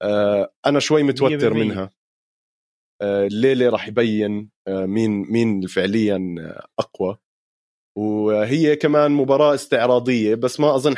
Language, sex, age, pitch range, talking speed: Arabic, male, 30-49, 105-140 Hz, 100 wpm